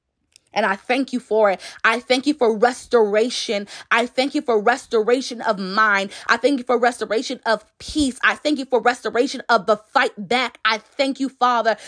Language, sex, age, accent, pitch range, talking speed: English, female, 20-39, American, 245-300 Hz, 190 wpm